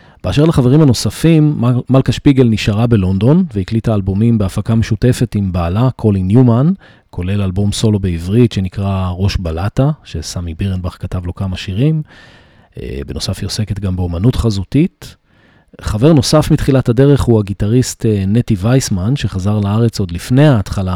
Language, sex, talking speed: Hebrew, male, 135 wpm